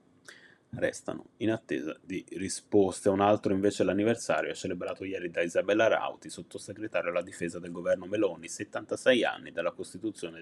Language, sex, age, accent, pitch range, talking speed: Italian, male, 30-49, native, 100-130 Hz, 145 wpm